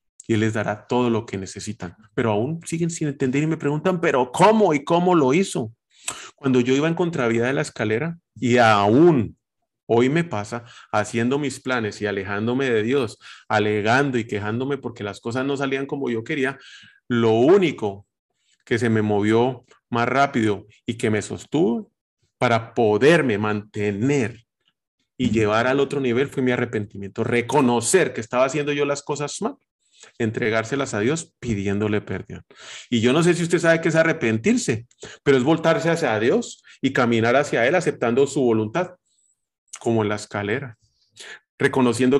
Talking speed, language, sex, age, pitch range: 165 wpm, Spanish, male, 30-49, 110-140 Hz